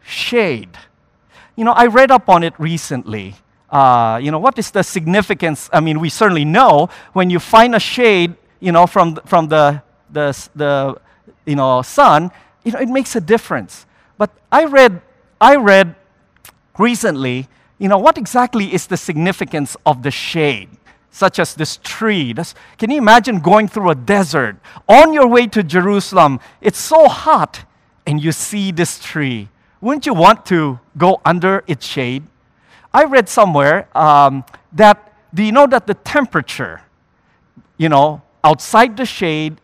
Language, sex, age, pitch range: English, male, 50-69, 150-230 Hz